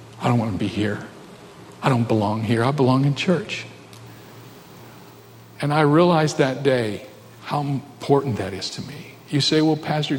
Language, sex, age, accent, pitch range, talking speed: English, male, 50-69, American, 125-150 Hz, 165 wpm